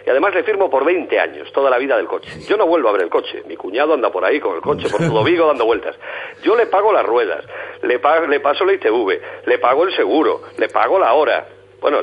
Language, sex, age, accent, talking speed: Spanish, male, 50-69, Spanish, 260 wpm